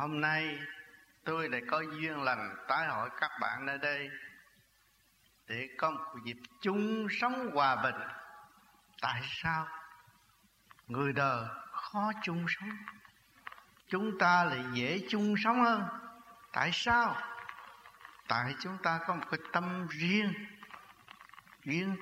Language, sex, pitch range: Vietnamese, male, 140-210 Hz